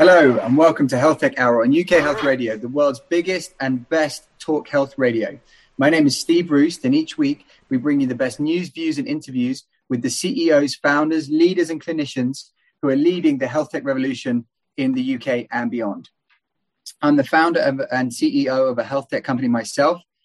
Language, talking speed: English, 195 wpm